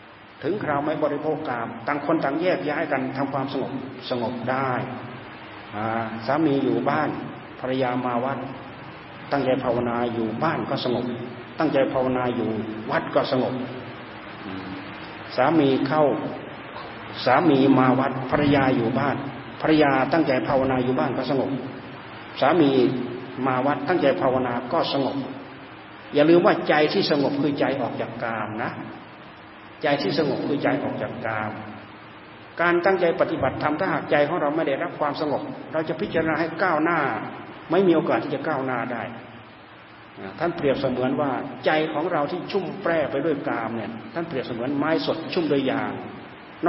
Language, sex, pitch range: Thai, male, 125-150 Hz